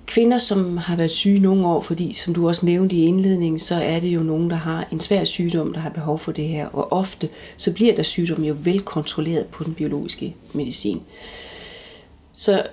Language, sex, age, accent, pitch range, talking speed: Danish, female, 30-49, native, 155-205 Hz, 205 wpm